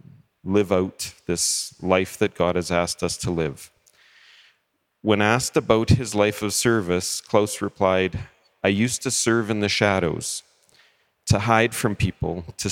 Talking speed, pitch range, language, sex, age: 150 wpm, 95-110 Hz, English, male, 40-59